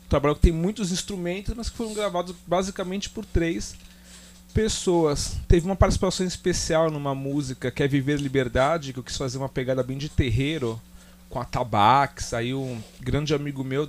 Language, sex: Portuguese, male